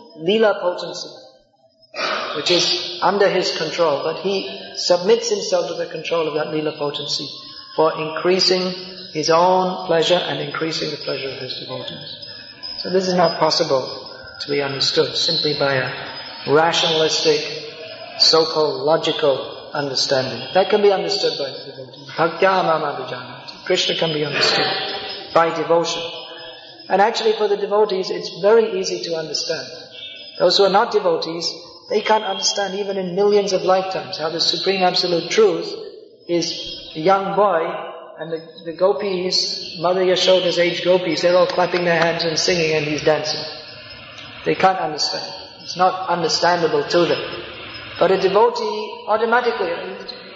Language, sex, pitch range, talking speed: English, male, 165-210 Hz, 145 wpm